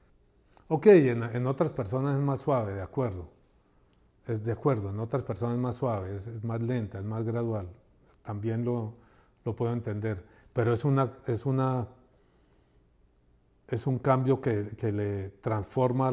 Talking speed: 150 wpm